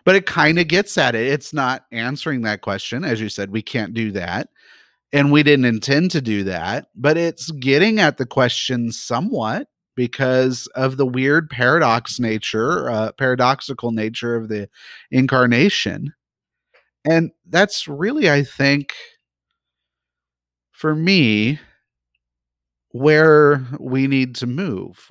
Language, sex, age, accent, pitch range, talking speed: English, male, 30-49, American, 115-145 Hz, 135 wpm